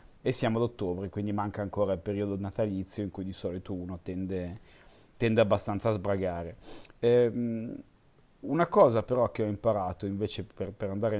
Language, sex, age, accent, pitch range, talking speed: Italian, male, 30-49, native, 95-115 Hz, 165 wpm